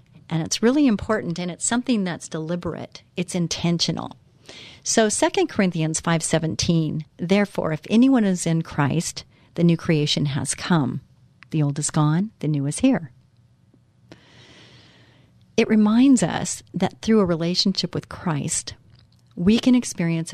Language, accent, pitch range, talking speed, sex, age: English, American, 145-185 Hz, 135 wpm, female, 40-59